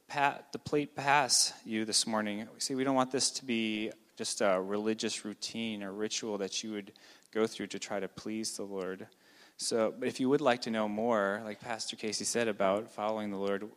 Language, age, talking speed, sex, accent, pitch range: English, 20-39, 210 wpm, male, American, 105-120 Hz